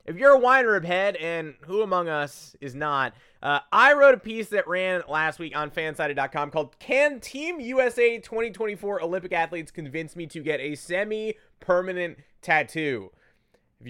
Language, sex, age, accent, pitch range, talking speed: English, male, 20-39, American, 155-215 Hz, 165 wpm